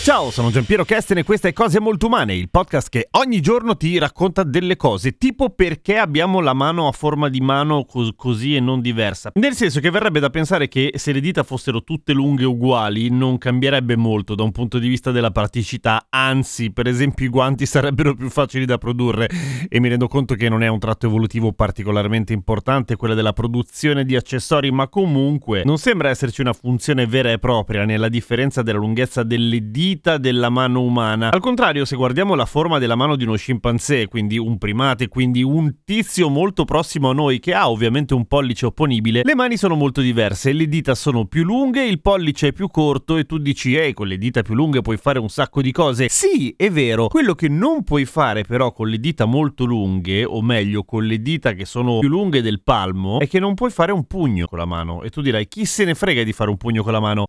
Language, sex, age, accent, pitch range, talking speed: Italian, male, 30-49, native, 115-160 Hz, 220 wpm